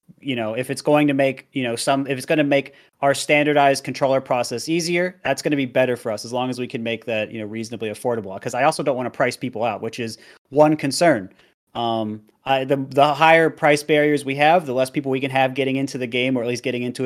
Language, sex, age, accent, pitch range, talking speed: English, male, 30-49, American, 120-140 Hz, 265 wpm